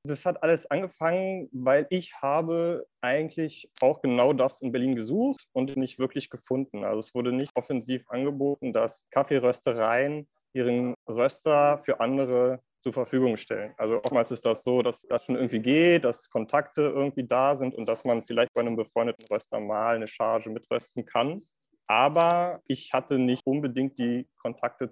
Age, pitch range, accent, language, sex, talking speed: 30-49, 125-145 Hz, German, German, male, 165 wpm